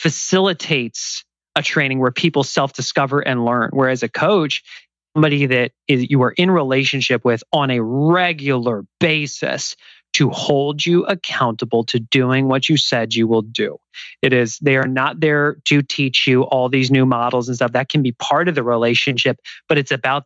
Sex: male